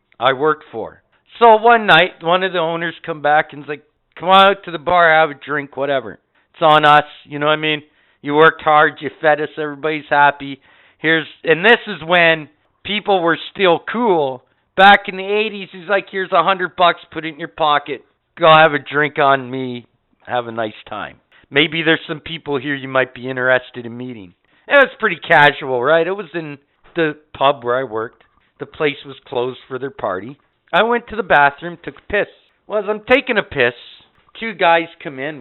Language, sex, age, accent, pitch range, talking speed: English, male, 50-69, American, 135-170 Hz, 210 wpm